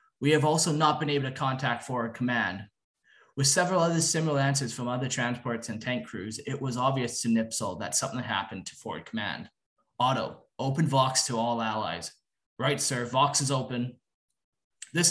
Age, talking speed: 20-39, 175 wpm